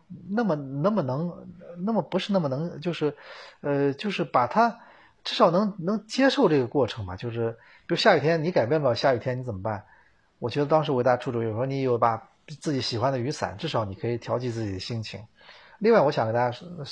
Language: Chinese